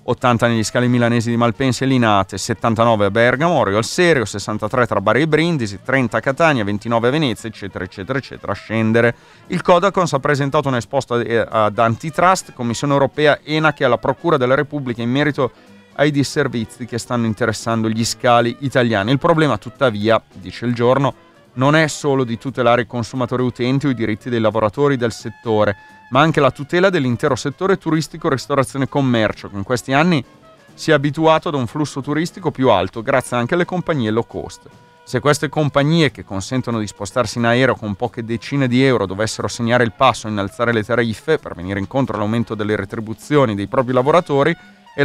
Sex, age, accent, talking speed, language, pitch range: male, 30-49, native, 180 wpm, Italian, 115-145 Hz